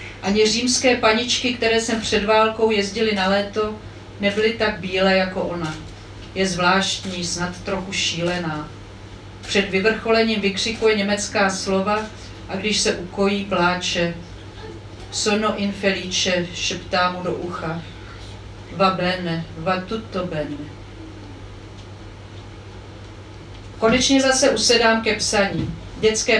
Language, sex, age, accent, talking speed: Czech, female, 40-59, native, 105 wpm